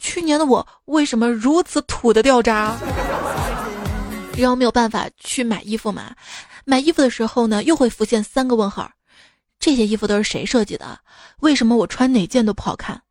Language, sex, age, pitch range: Chinese, female, 20-39, 215-265 Hz